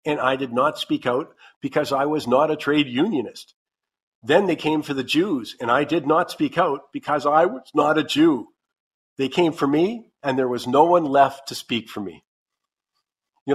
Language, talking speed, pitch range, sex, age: English, 205 wpm, 130-165 Hz, male, 50-69